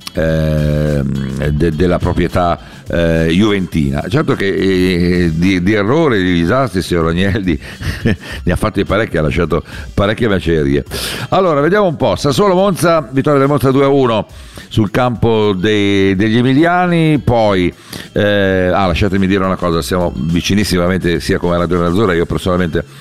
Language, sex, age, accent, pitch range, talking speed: Italian, male, 50-69, native, 85-115 Hz, 145 wpm